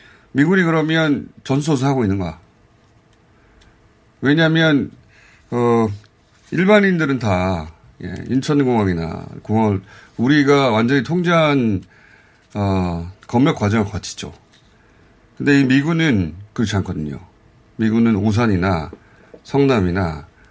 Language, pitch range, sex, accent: Korean, 95-135 Hz, male, native